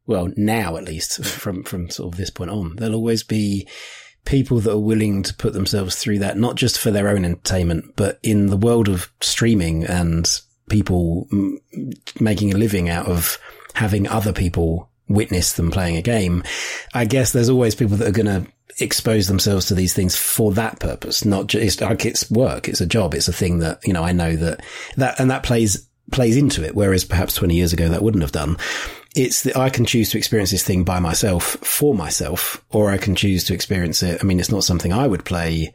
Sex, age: male, 30-49